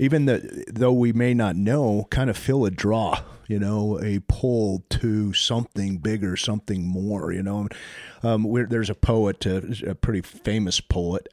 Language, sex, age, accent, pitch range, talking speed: English, male, 40-59, American, 95-120 Hz, 175 wpm